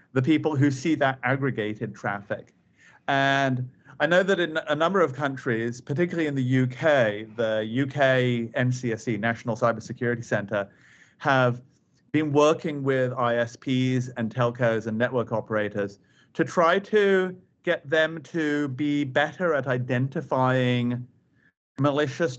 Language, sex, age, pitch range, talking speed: English, male, 40-59, 120-150 Hz, 125 wpm